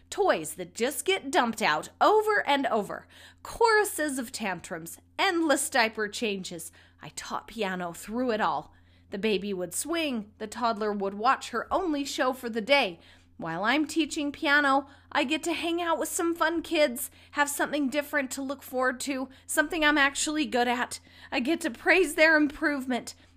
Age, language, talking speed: 30-49, English, 170 wpm